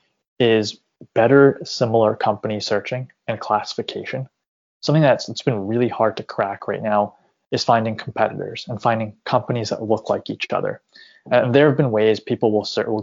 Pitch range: 105-115 Hz